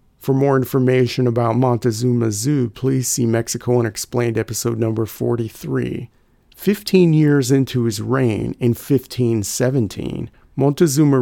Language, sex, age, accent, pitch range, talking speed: English, male, 40-59, American, 115-140 Hz, 110 wpm